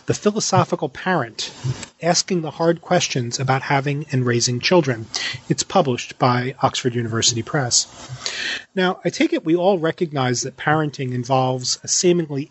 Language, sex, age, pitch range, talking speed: English, male, 30-49, 130-180 Hz, 145 wpm